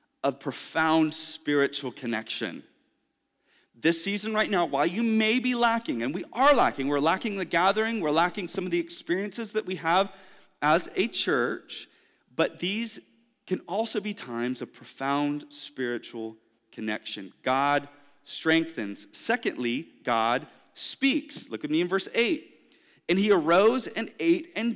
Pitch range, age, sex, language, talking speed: 160-260 Hz, 30-49, male, English, 145 wpm